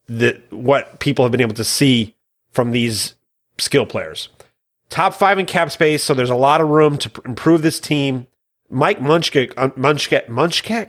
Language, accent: English, American